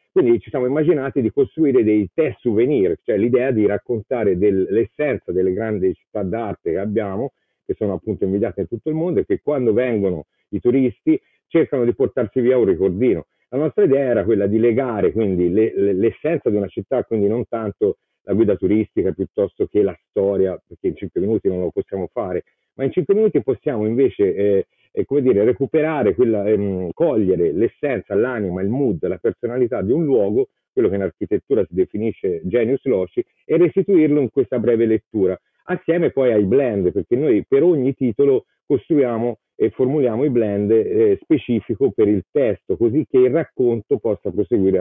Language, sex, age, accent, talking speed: Italian, male, 50-69, native, 175 wpm